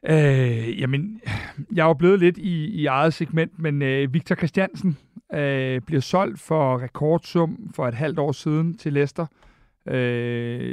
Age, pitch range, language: 60-79, 140-165 Hz, Danish